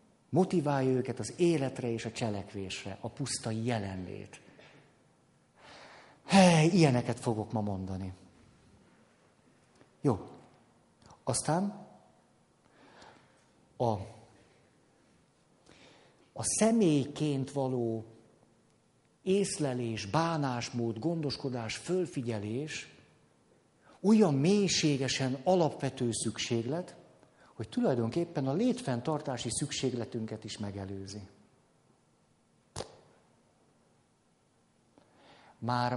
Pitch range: 115-160 Hz